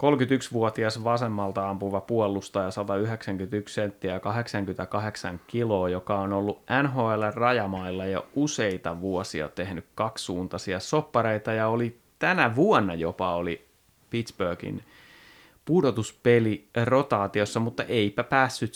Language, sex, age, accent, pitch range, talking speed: Finnish, male, 30-49, native, 100-130 Hz, 100 wpm